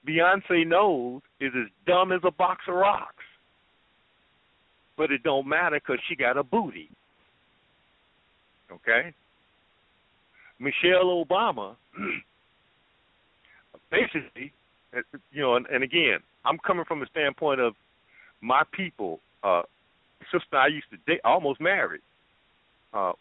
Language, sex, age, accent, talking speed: English, male, 50-69, American, 115 wpm